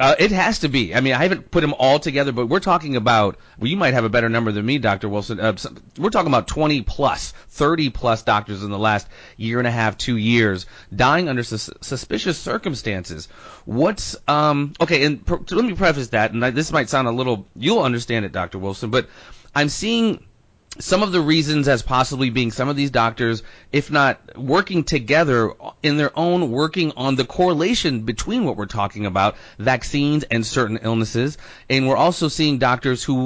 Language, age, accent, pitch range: English, 30-49, American, 115-155 Hz